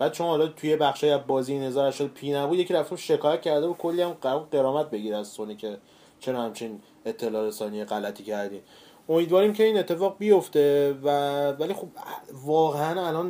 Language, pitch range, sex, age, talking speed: Persian, 110-150 Hz, male, 30-49, 165 wpm